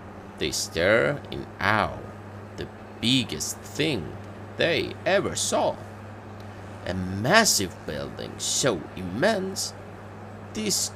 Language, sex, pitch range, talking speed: English, male, 100-115 Hz, 90 wpm